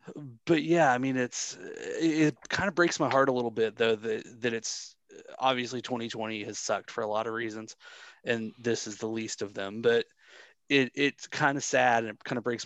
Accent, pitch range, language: American, 110-130 Hz, English